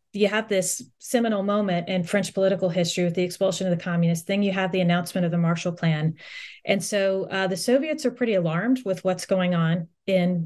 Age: 30-49